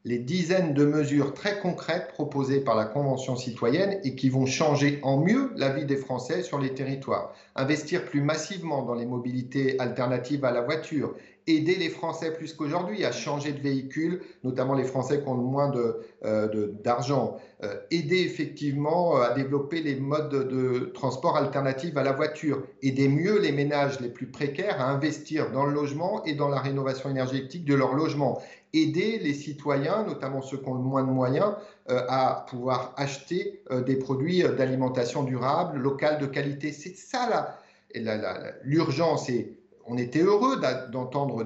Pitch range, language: 130-160 Hz, French